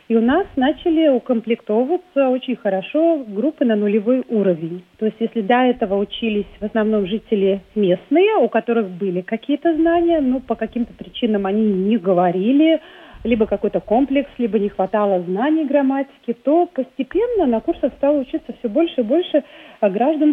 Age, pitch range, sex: 40-59, 205-280 Hz, female